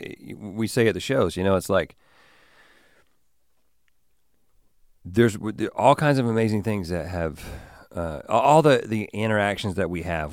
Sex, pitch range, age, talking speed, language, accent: male, 85-115 Hz, 40-59, 150 wpm, English, American